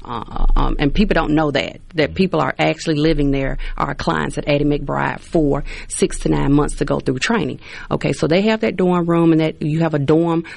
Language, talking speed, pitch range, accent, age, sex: English, 225 wpm, 160-200 Hz, American, 30-49, female